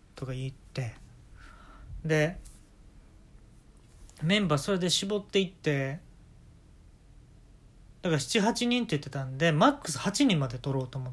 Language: Japanese